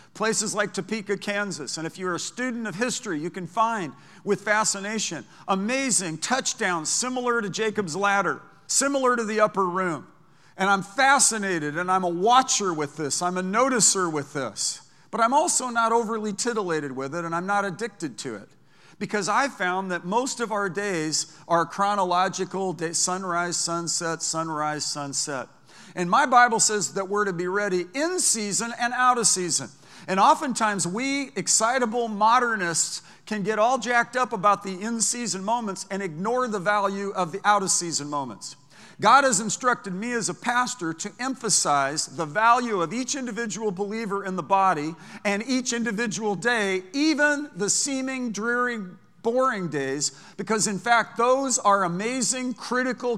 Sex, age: male, 50-69